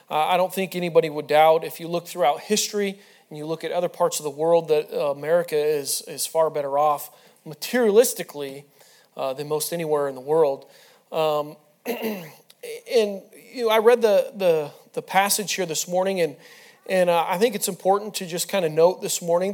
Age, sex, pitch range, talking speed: 30-49, male, 155-205 Hz, 195 wpm